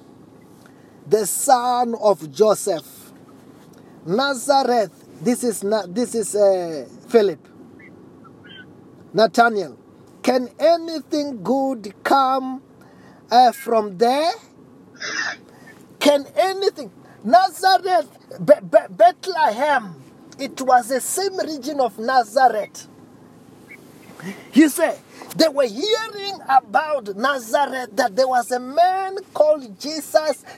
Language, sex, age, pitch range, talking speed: English, male, 30-49, 235-305 Hz, 95 wpm